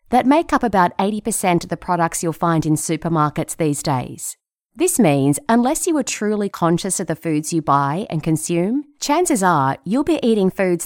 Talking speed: 190 wpm